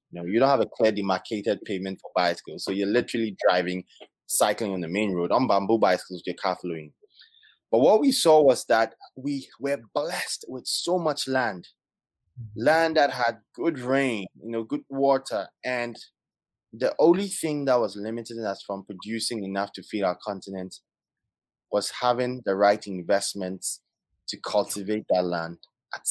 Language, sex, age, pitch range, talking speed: English, male, 20-39, 95-125 Hz, 170 wpm